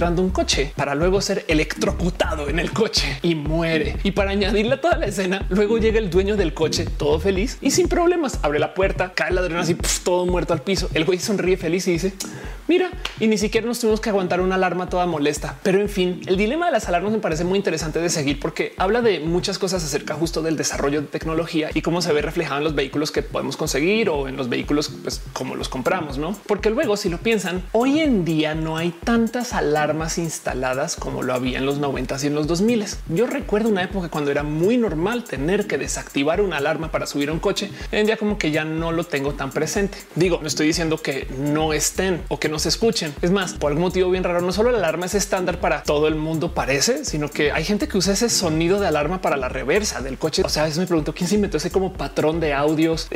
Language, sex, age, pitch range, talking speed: Spanish, male, 30-49, 155-200 Hz, 240 wpm